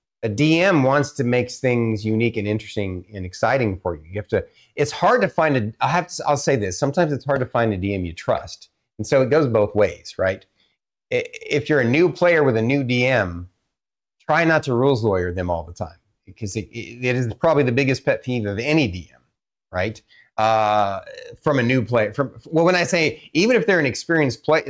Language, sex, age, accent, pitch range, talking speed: English, male, 30-49, American, 105-145 Hz, 220 wpm